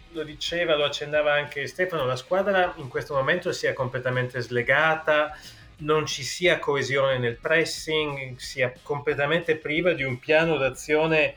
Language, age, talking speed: Italian, 30-49, 145 wpm